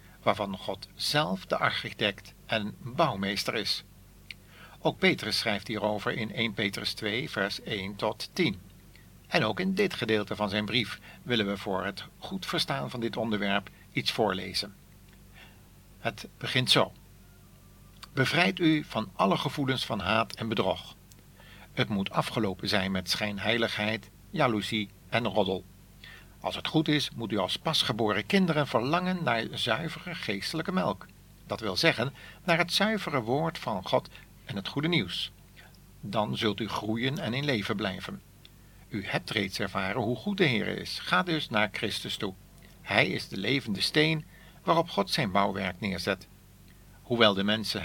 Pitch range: 100-140 Hz